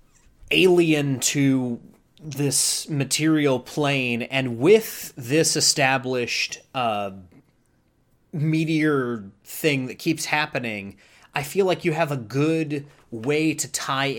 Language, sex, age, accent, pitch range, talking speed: English, male, 30-49, American, 120-145 Hz, 105 wpm